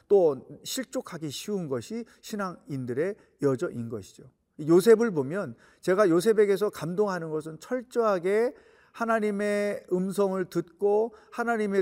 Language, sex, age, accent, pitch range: Korean, male, 40-59, native, 160-215 Hz